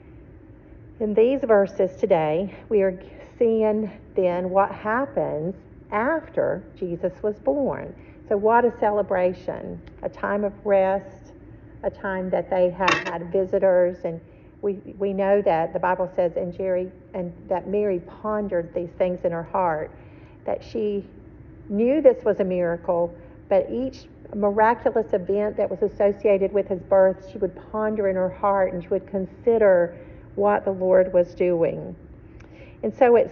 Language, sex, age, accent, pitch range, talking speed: English, female, 50-69, American, 185-220 Hz, 150 wpm